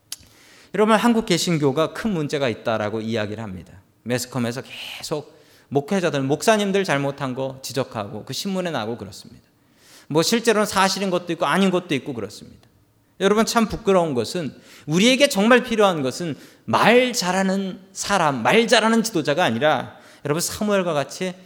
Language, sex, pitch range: Korean, male, 140-225 Hz